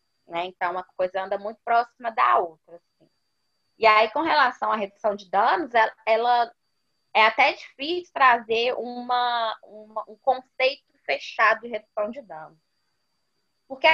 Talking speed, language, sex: 145 wpm, Portuguese, female